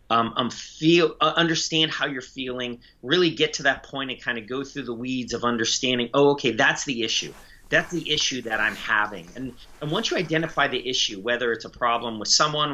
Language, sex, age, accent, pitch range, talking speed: English, male, 30-49, American, 115-150 Hz, 210 wpm